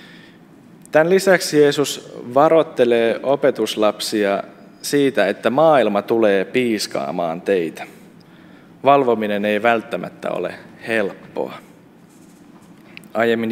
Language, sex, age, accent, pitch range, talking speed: Finnish, male, 20-39, native, 110-140 Hz, 75 wpm